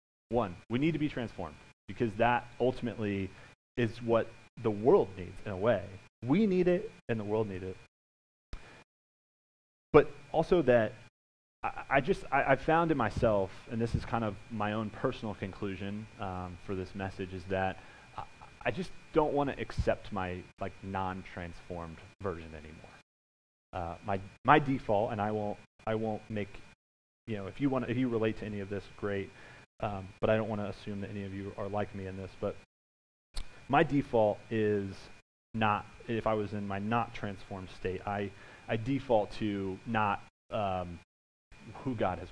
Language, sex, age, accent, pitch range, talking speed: English, male, 30-49, American, 95-120 Hz, 175 wpm